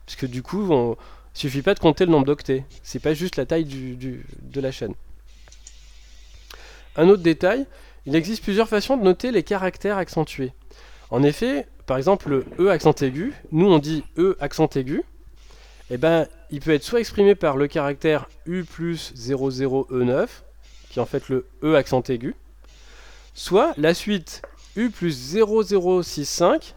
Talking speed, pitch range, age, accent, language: 180 wpm, 135-185 Hz, 20-39, French, French